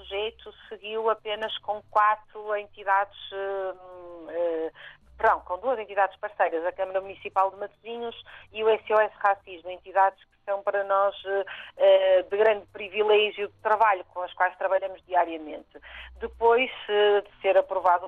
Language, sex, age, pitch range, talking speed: Portuguese, female, 40-59, 185-215 Hz, 125 wpm